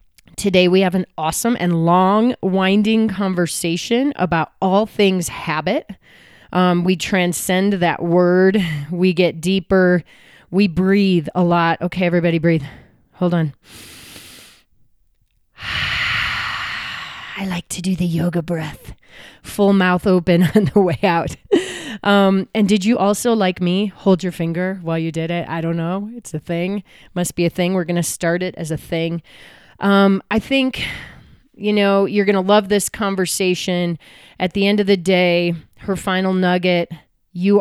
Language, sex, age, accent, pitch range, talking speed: English, female, 30-49, American, 170-195 Hz, 155 wpm